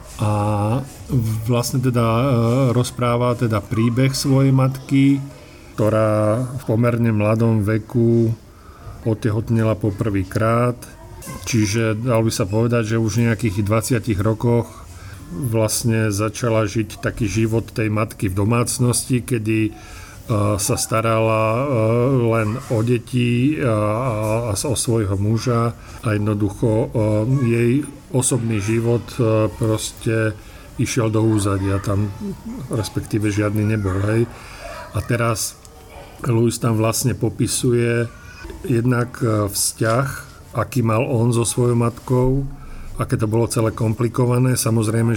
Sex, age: male, 50-69